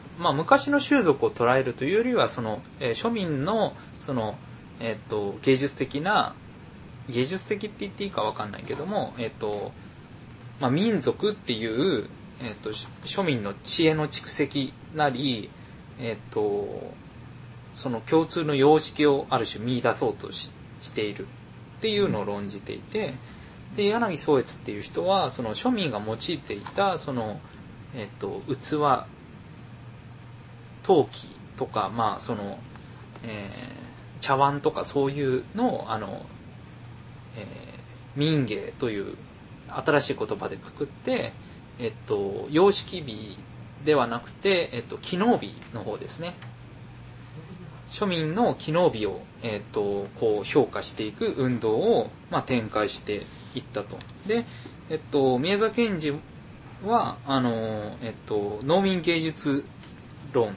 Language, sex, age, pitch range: Japanese, male, 20-39, 120-175 Hz